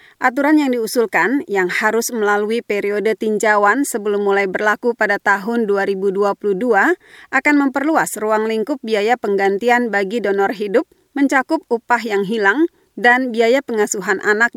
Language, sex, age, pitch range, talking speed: Indonesian, female, 30-49, 205-260 Hz, 130 wpm